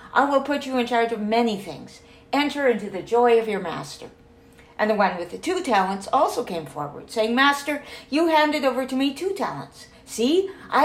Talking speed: 205 wpm